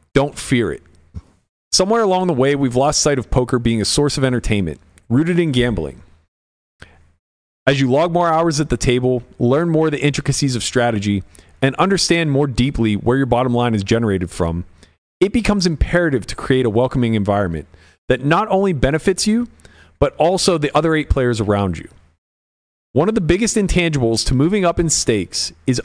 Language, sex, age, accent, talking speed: English, male, 40-59, American, 180 wpm